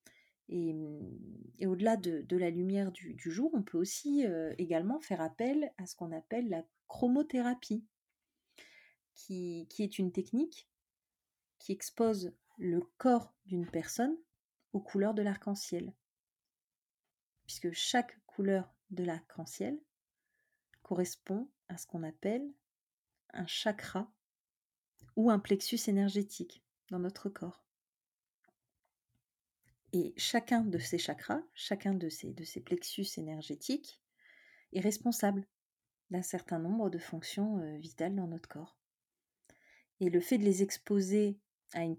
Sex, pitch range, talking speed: female, 175-225 Hz, 125 wpm